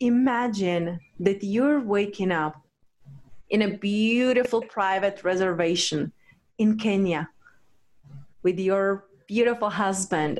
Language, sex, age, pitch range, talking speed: English, female, 30-49, 175-220 Hz, 90 wpm